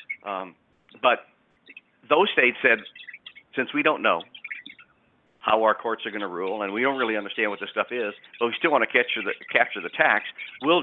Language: English